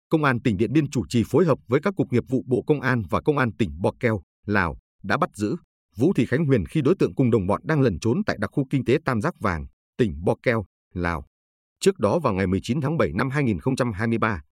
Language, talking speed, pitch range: Vietnamese, 250 wpm, 100-140 Hz